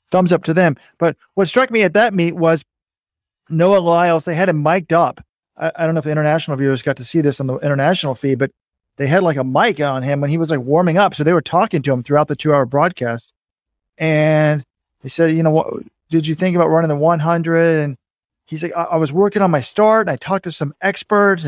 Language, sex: English, male